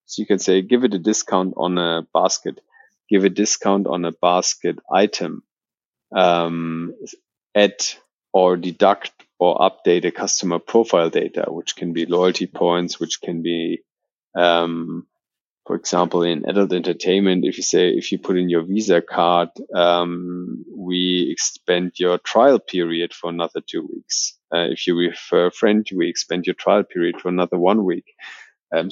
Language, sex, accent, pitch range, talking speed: English, male, German, 85-95 Hz, 160 wpm